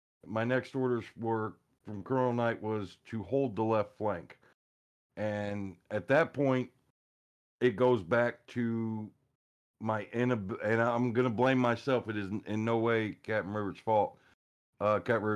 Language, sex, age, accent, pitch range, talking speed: English, male, 50-69, American, 95-115 Hz, 145 wpm